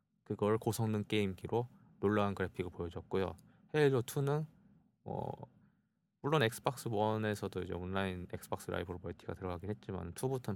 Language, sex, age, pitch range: Korean, male, 20-39, 95-130 Hz